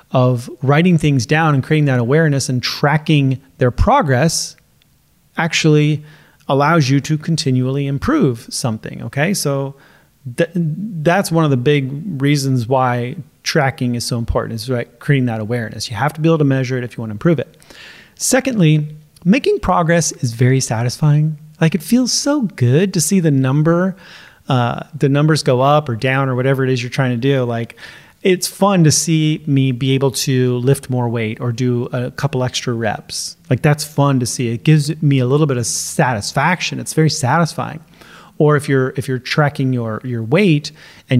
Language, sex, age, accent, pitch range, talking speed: English, male, 30-49, American, 125-155 Hz, 180 wpm